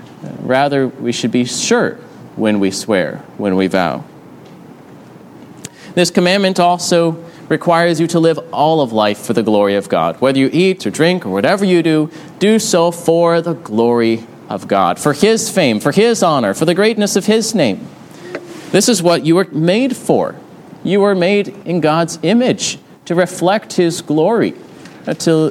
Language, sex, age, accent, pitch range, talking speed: English, male, 30-49, American, 135-175 Hz, 170 wpm